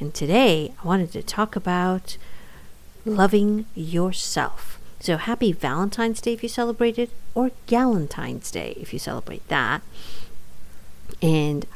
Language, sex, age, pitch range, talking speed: English, female, 50-69, 155-215 Hz, 130 wpm